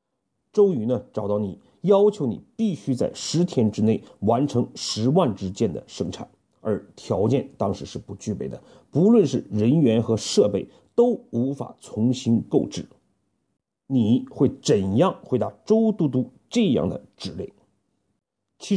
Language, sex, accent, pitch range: Chinese, male, native, 105-170 Hz